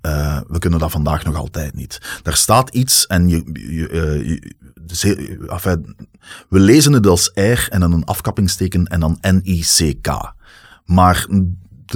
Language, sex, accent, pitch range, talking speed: Dutch, male, Dutch, 80-95 Hz, 130 wpm